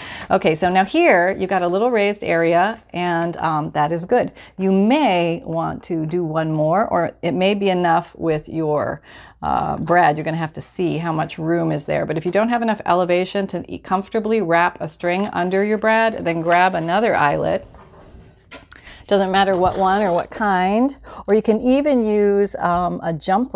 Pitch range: 160-200 Hz